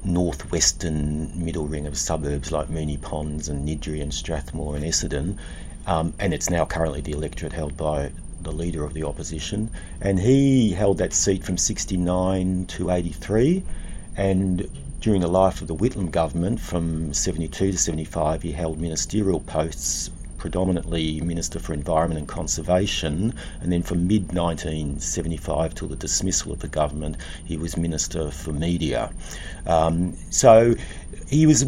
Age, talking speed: 50-69, 150 wpm